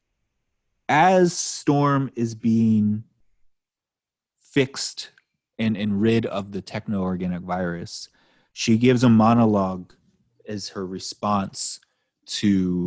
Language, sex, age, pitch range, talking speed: English, male, 30-49, 95-115 Hz, 100 wpm